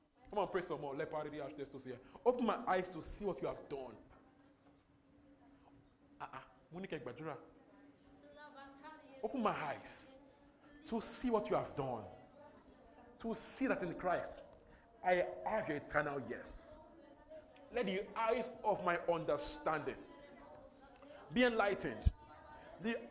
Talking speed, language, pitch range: 120 wpm, English, 215-280 Hz